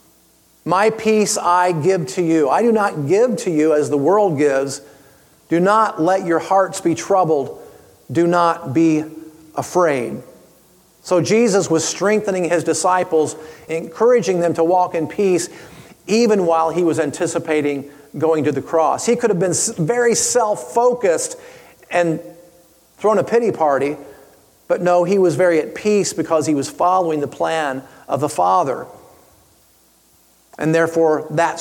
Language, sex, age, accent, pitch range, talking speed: English, male, 40-59, American, 155-205 Hz, 150 wpm